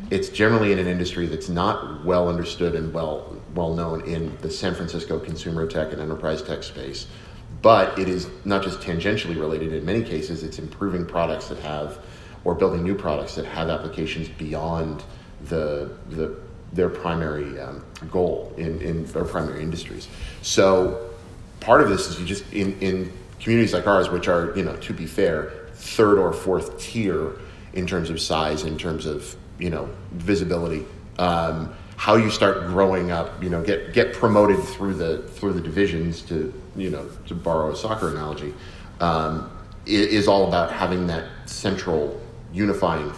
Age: 30-49